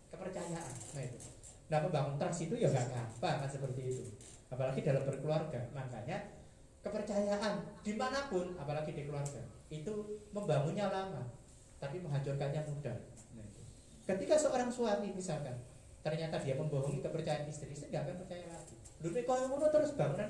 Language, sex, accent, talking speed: Indonesian, male, native, 135 wpm